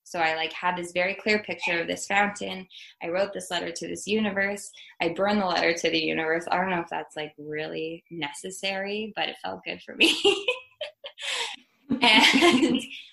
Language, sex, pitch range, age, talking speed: English, female, 170-215 Hz, 20-39, 185 wpm